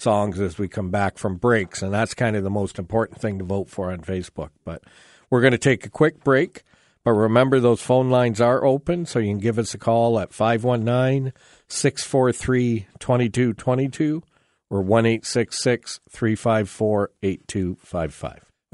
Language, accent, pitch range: English, American, 105-130 Hz